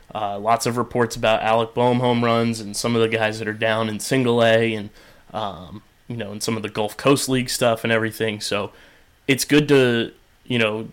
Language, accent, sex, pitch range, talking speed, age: English, American, male, 115-125 Hz, 220 wpm, 20-39